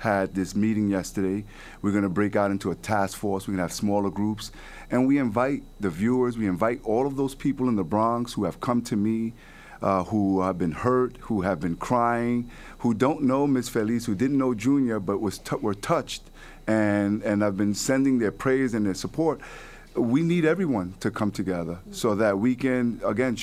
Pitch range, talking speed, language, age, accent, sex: 100-125 Hz, 205 wpm, English, 50-69, American, male